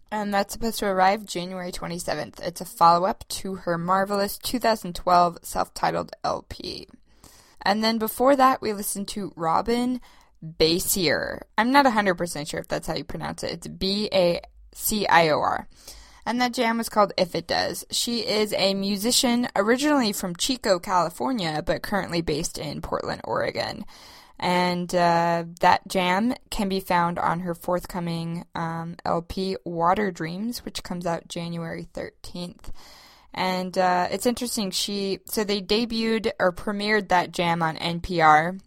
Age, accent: 10-29, American